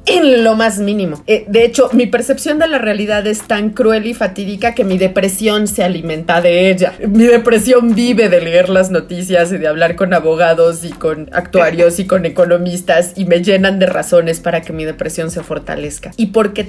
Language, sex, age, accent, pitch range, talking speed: Spanish, female, 30-49, Mexican, 170-230 Hz, 200 wpm